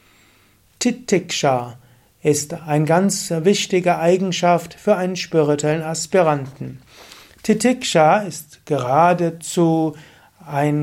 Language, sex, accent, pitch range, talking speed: German, male, German, 140-185 Hz, 80 wpm